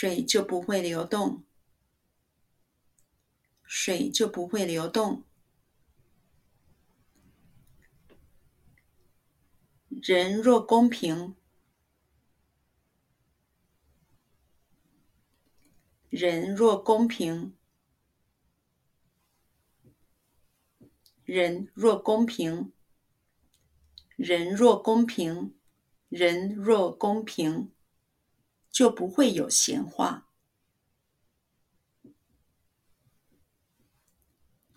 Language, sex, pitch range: Chinese, female, 165-235 Hz